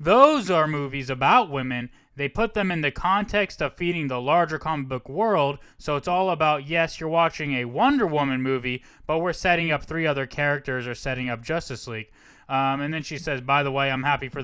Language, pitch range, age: English, 140-195 Hz, 20-39